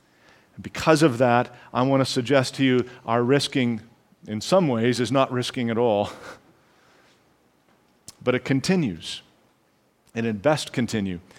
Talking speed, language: 135 wpm, English